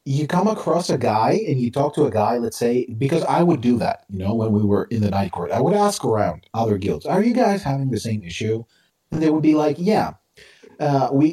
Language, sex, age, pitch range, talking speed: English, male, 30-49, 100-160 Hz, 255 wpm